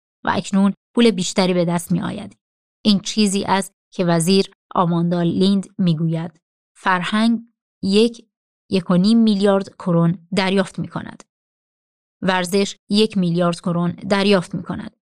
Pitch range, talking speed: 175-200 Hz, 135 wpm